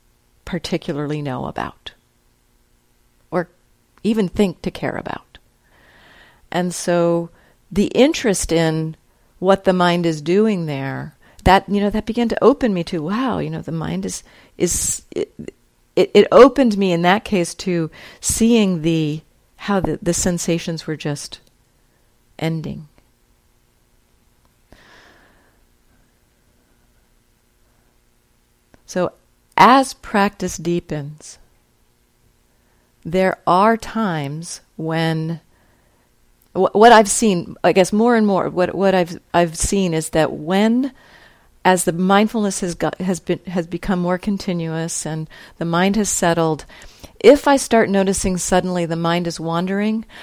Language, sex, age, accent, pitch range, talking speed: English, female, 50-69, American, 155-200 Hz, 125 wpm